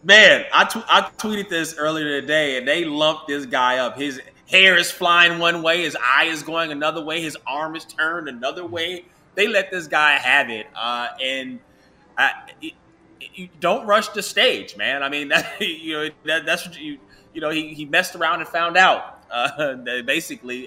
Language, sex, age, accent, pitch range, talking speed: English, male, 20-39, American, 150-200 Hz, 190 wpm